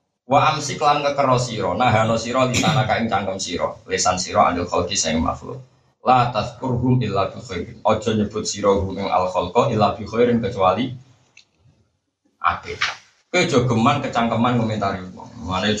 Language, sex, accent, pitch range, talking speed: Indonesian, male, native, 105-145 Hz, 85 wpm